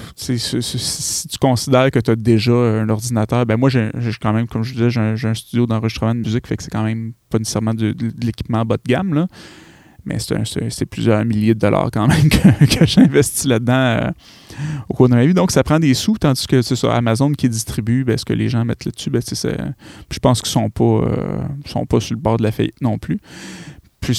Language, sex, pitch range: French, male, 110-135 Hz